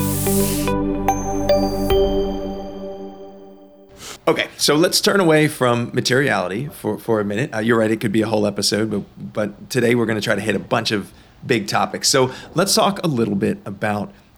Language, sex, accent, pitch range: English, male, American, 100-125 Hz